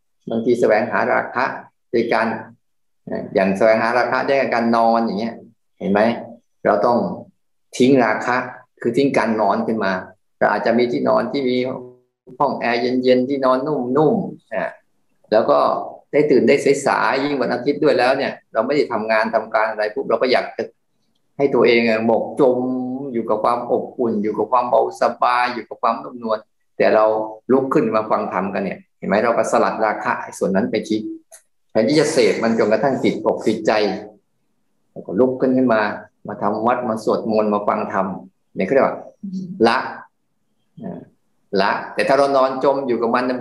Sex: male